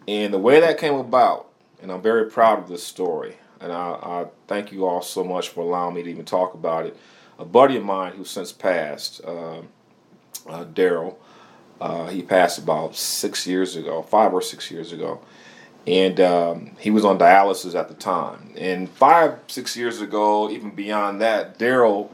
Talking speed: 185 wpm